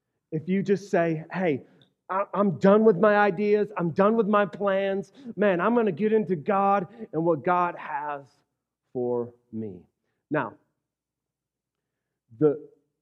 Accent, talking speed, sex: American, 140 wpm, male